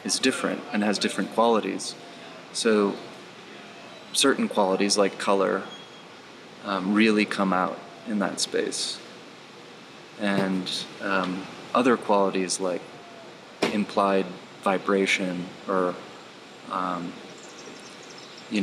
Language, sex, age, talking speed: English, male, 30-49, 90 wpm